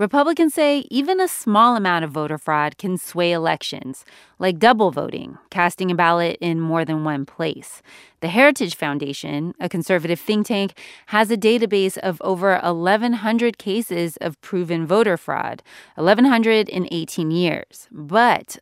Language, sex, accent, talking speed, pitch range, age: English, female, American, 150 wpm, 170-220 Hz, 30-49